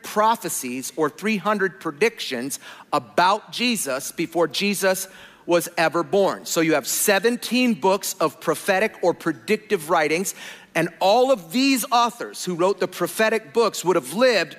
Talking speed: 140 wpm